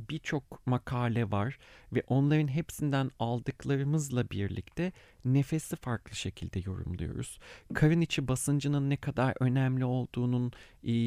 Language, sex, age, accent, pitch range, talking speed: Turkish, male, 40-59, native, 110-150 Hz, 110 wpm